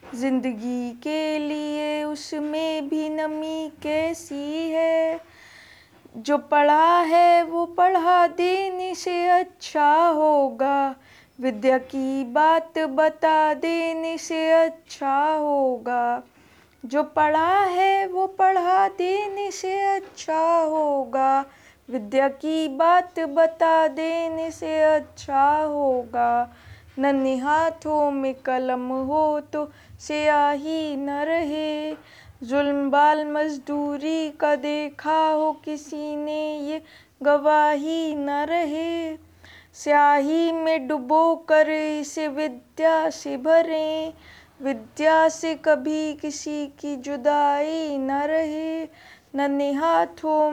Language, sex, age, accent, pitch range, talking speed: Hindi, female, 20-39, native, 290-320 Hz, 95 wpm